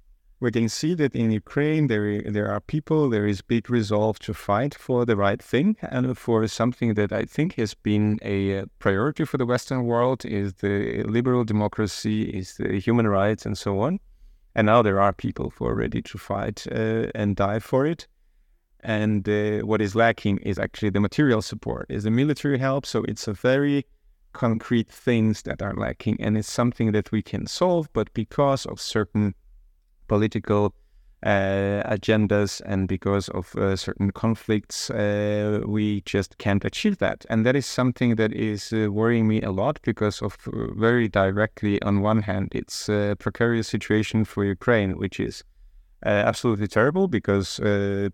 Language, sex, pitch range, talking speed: English, male, 100-120 Hz, 175 wpm